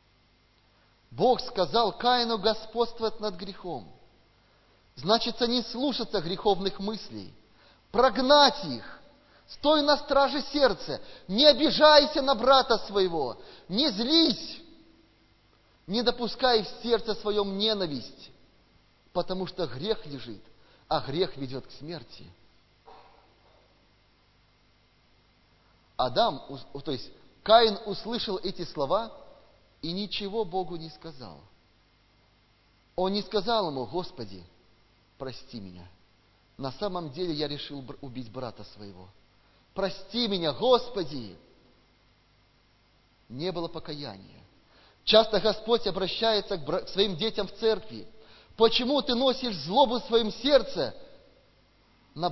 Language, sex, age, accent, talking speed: Russian, male, 30-49, native, 100 wpm